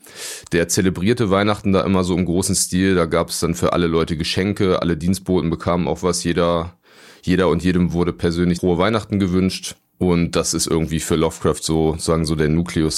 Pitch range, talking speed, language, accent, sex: 85-95 Hz, 195 wpm, German, German, male